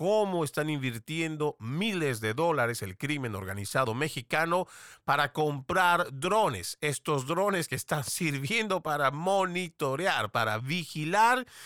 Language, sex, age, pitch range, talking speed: Spanish, male, 40-59, 120-165 Hz, 115 wpm